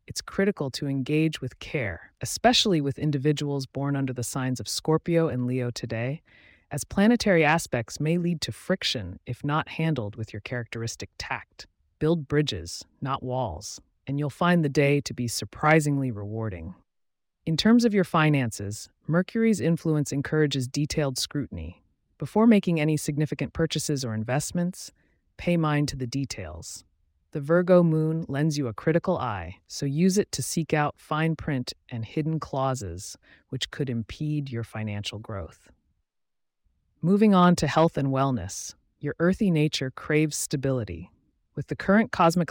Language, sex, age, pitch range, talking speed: English, female, 30-49, 115-160 Hz, 150 wpm